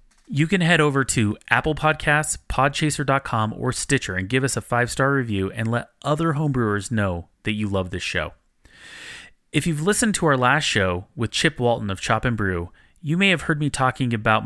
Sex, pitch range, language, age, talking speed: male, 105-145 Hz, English, 30-49, 195 wpm